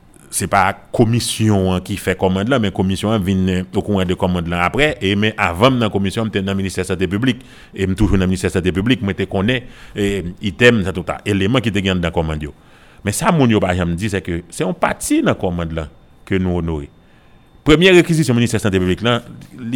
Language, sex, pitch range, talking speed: French, male, 90-115 Hz, 250 wpm